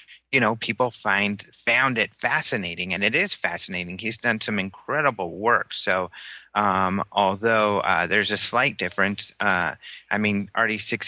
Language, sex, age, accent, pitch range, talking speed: English, male, 30-49, American, 100-120 Hz, 155 wpm